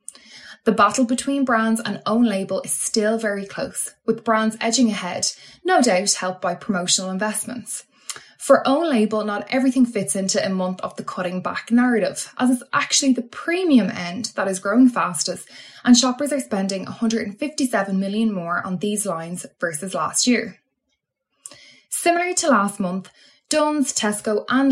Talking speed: 160 wpm